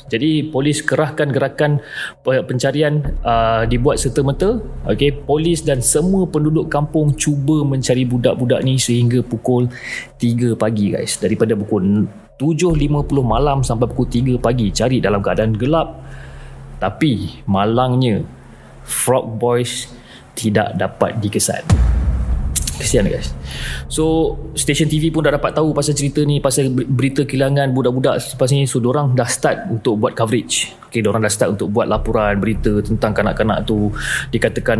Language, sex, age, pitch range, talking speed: Malay, male, 30-49, 115-150 Hz, 135 wpm